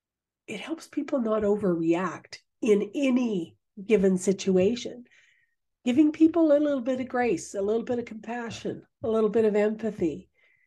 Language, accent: English, American